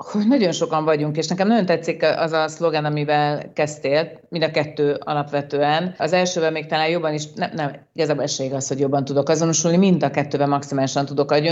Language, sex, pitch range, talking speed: Hungarian, female, 145-175 Hz, 195 wpm